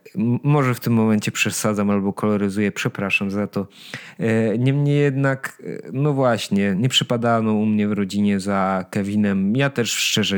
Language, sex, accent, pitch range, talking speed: Polish, male, native, 105-130 Hz, 145 wpm